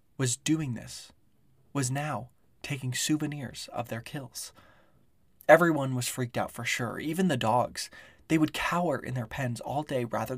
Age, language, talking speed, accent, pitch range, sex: 20-39, English, 160 wpm, American, 115-150 Hz, male